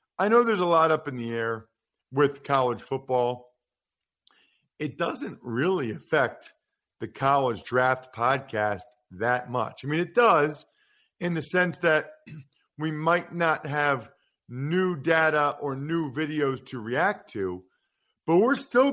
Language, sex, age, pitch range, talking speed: English, male, 50-69, 135-175 Hz, 145 wpm